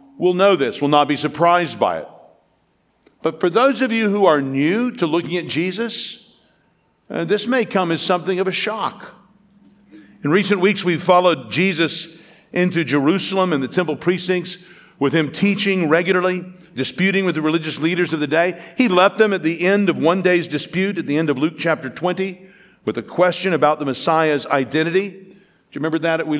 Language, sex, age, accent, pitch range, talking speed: English, male, 50-69, American, 160-200 Hz, 190 wpm